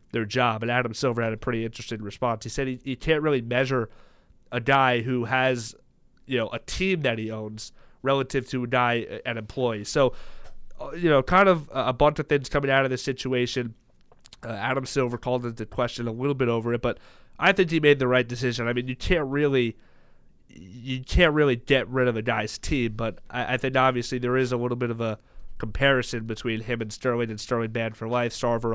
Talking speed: 215 wpm